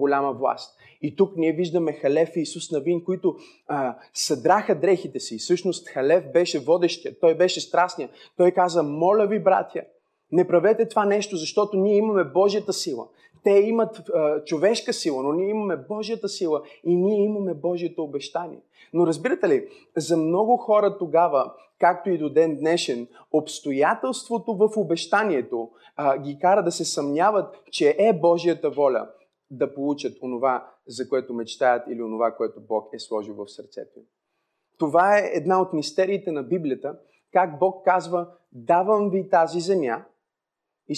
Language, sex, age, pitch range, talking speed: Bulgarian, male, 30-49, 150-195 Hz, 155 wpm